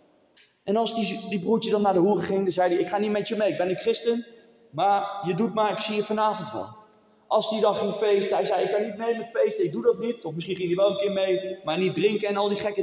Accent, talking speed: Dutch, 300 wpm